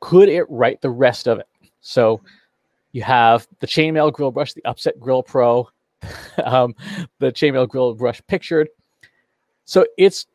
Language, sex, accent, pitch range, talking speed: English, male, American, 115-155 Hz, 150 wpm